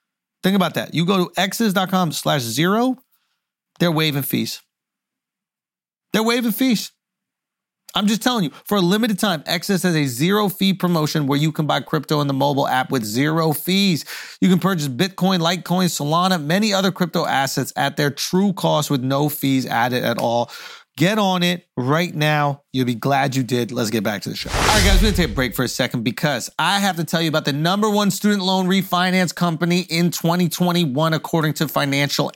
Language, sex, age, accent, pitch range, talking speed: English, male, 30-49, American, 155-200 Hz, 195 wpm